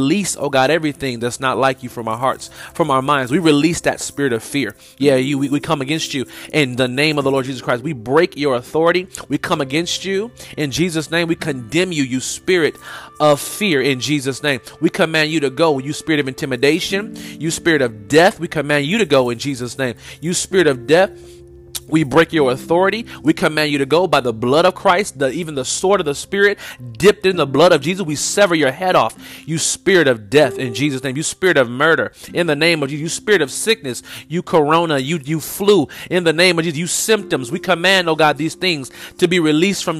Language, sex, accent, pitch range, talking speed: English, male, American, 135-170 Hz, 230 wpm